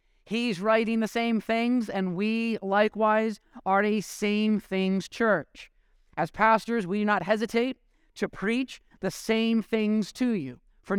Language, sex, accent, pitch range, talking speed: English, male, American, 185-220 Hz, 145 wpm